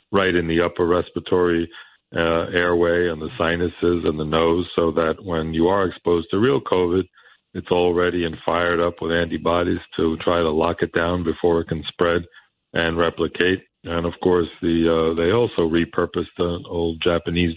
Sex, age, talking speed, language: male, 40-59, 180 wpm, English